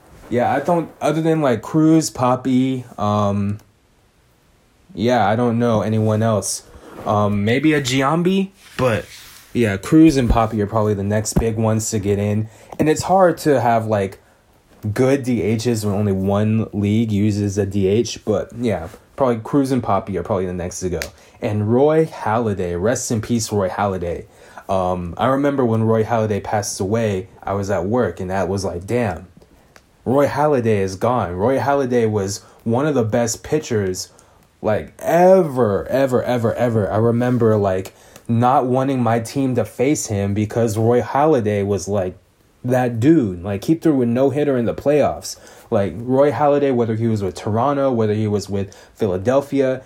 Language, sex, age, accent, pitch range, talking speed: English, male, 20-39, American, 100-130 Hz, 170 wpm